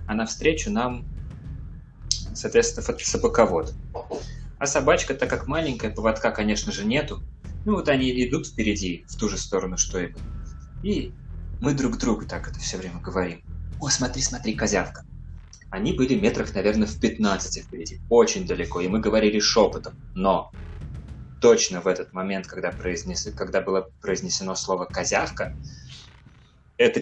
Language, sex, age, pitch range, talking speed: Russian, male, 20-39, 90-125 Hz, 140 wpm